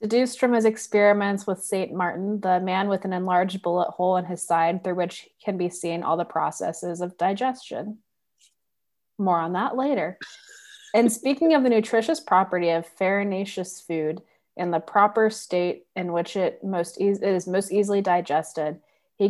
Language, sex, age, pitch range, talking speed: English, female, 20-39, 175-210 Hz, 170 wpm